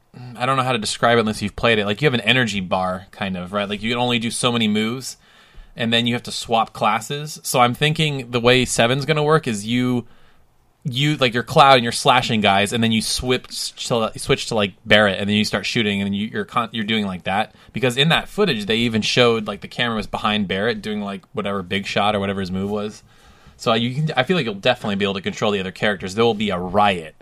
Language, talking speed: English, 250 wpm